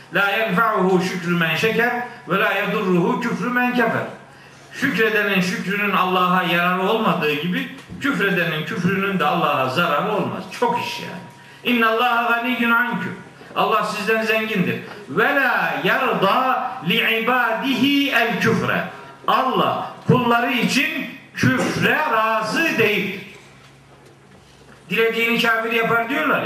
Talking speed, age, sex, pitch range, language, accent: 95 wpm, 50-69, male, 195-245 Hz, Turkish, native